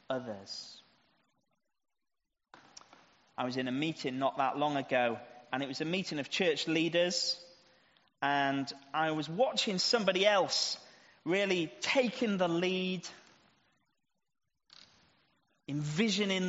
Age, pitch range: 30-49, 155-210 Hz